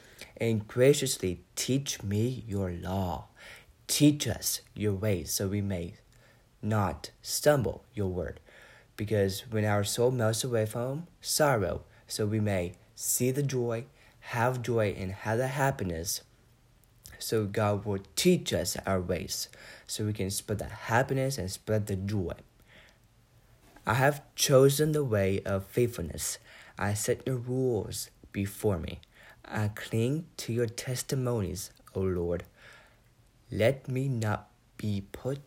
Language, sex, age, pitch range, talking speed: English, male, 20-39, 100-120 Hz, 135 wpm